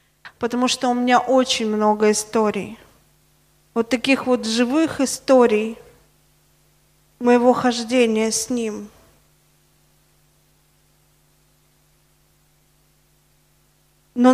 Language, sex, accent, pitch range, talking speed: Russian, female, native, 220-245 Hz, 70 wpm